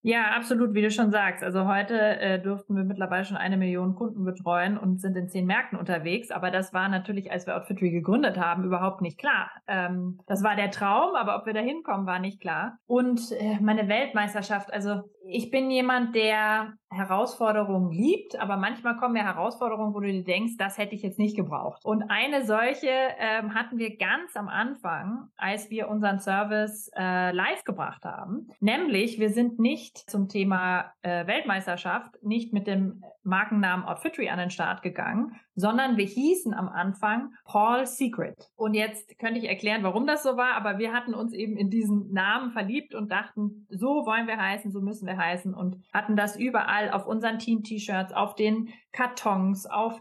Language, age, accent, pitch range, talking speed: German, 20-39, German, 190-230 Hz, 185 wpm